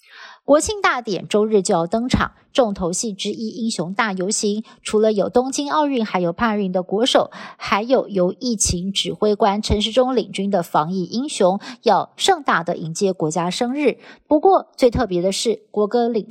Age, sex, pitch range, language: 50-69, female, 190-255 Hz, Chinese